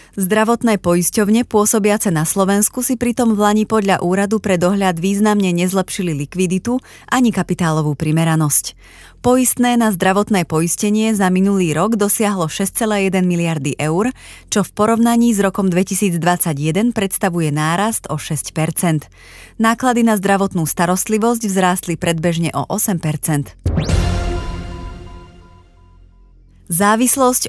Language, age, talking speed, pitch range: Slovak, 30-49, 105 wpm, 170-215 Hz